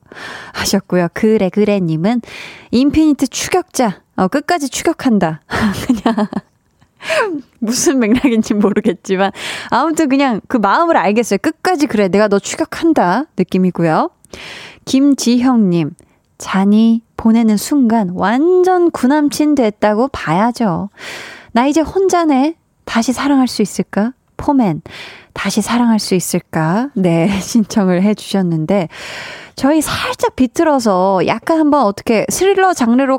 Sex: female